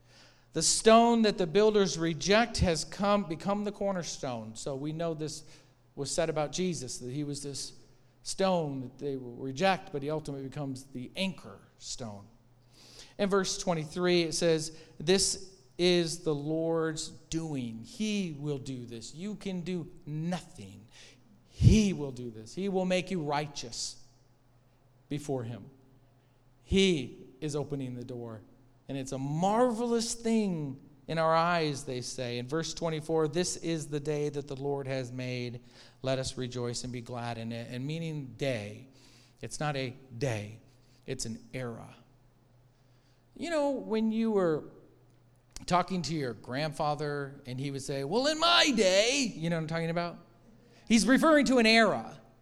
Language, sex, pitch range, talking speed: English, male, 125-190 Hz, 155 wpm